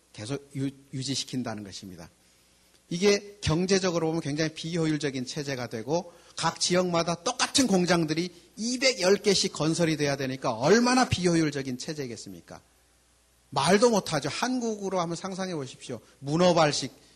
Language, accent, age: Korean, native, 40-59